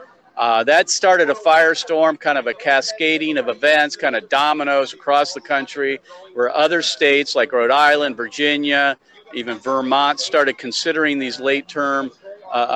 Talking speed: 150 wpm